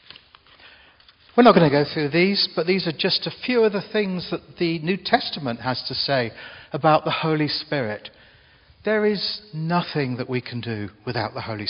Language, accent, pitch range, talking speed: English, British, 120-165 Hz, 190 wpm